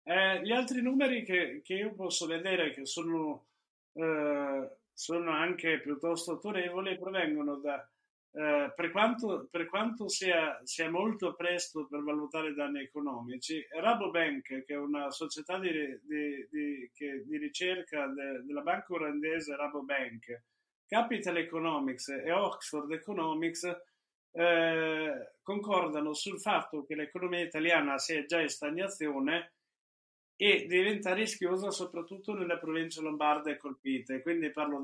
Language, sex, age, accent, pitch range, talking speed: Italian, male, 50-69, native, 150-185 Hz, 125 wpm